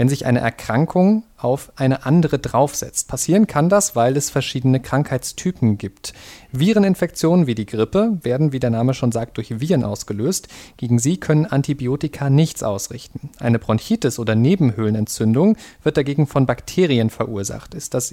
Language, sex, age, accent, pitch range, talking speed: German, male, 40-59, German, 120-150 Hz, 150 wpm